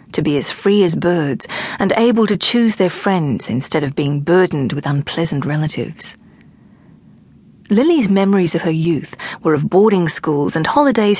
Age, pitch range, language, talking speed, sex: 40-59, 155-205 Hz, English, 160 wpm, female